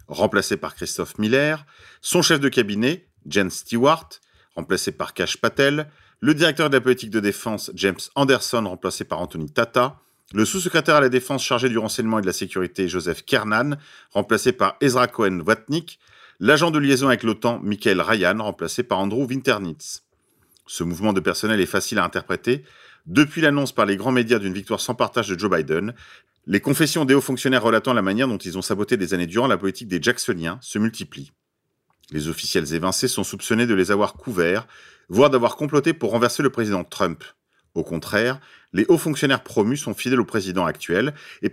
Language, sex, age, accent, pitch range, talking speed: French, male, 40-59, French, 95-135 Hz, 185 wpm